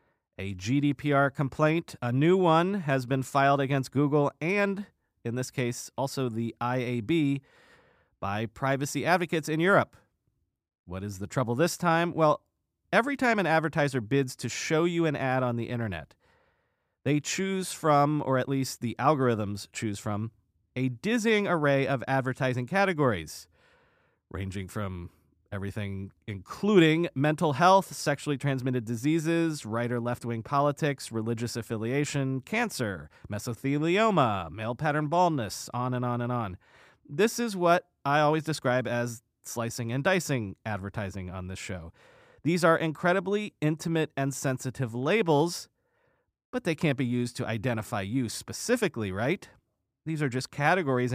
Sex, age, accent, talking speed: male, 30-49, American, 140 wpm